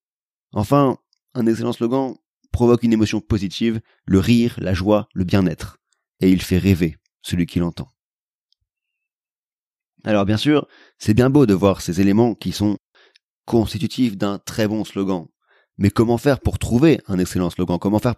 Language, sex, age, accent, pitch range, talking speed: French, male, 30-49, French, 100-120 Hz, 160 wpm